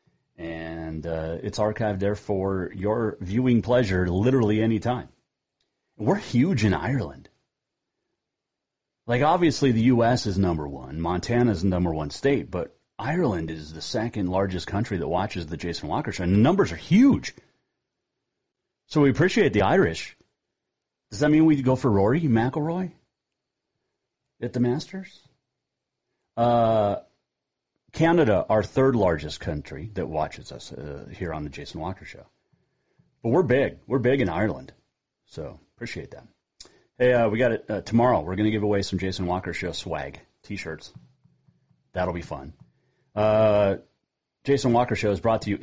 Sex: male